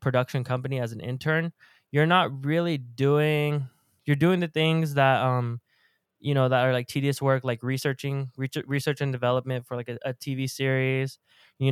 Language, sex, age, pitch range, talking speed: English, male, 20-39, 125-140 Hz, 175 wpm